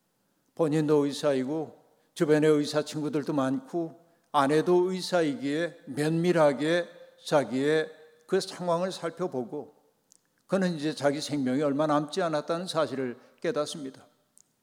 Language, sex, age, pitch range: Korean, male, 60-79, 150-175 Hz